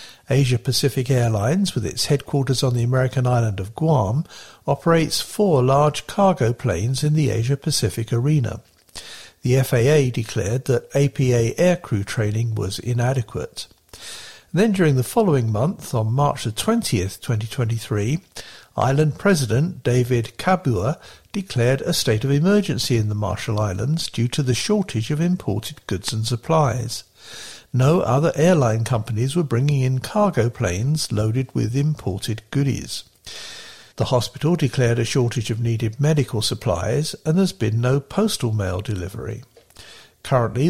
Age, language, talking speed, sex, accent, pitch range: 60-79, English, 135 wpm, male, British, 115-150 Hz